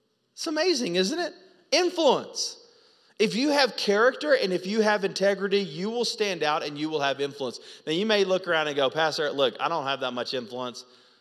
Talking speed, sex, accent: 205 wpm, male, American